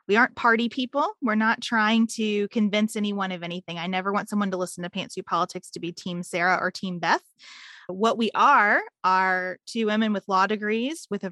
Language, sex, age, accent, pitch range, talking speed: English, female, 20-39, American, 185-225 Hz, 205 wpm